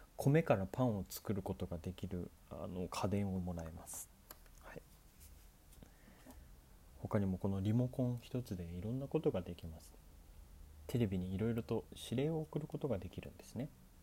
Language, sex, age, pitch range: Japanese, male, 30-49, 75-105 Hz